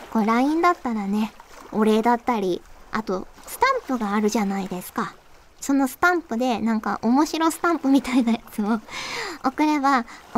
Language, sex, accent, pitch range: Japanese, male, native, 210-290 Hz